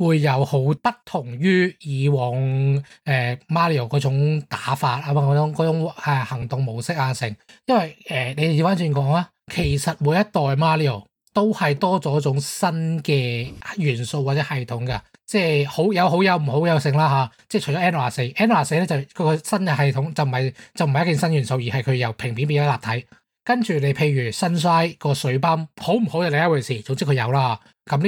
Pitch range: 130-165 Hz